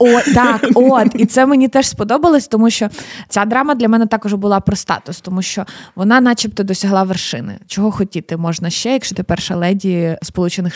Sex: female